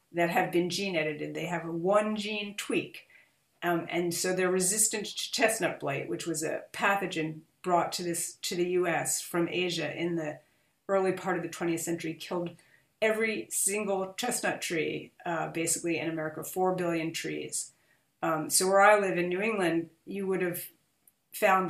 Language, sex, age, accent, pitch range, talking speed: English, female, 40-59, American, 170-205 Hz, 175 wpm